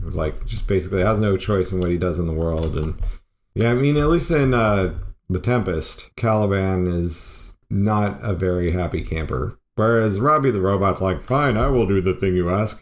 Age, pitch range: 40-59, 90-110 Hz